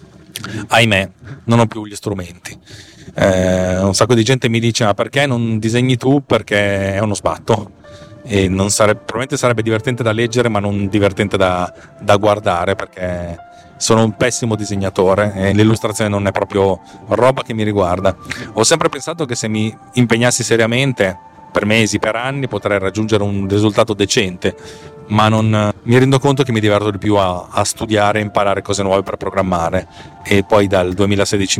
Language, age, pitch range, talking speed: Italian, 30-49, 100-120 Hz, 165 wpm